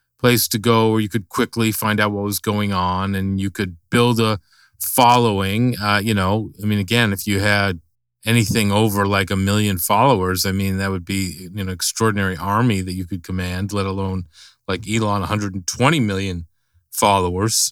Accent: American